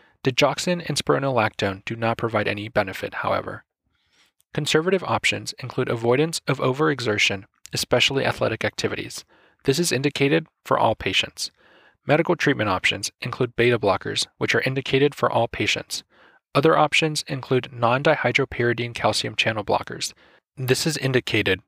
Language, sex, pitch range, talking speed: English, male, 115-140 Hz, 125 wpm